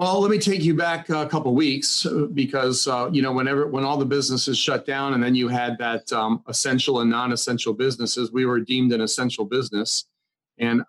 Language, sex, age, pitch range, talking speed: English, male, 40-59, 120-145 Hz, 210 wpm